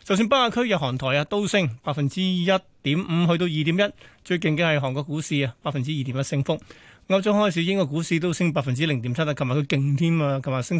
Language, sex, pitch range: Chinese, male, 145-190 Hz